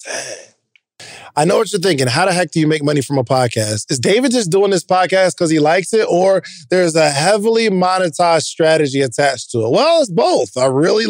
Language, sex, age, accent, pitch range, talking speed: English, male, 20-39, American, 150-200 Hz, 210 wpm